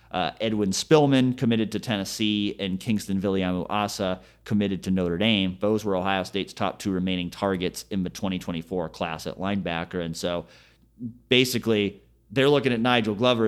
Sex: male